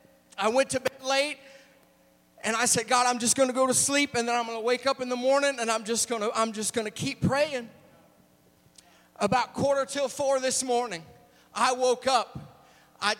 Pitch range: 225-265 Hz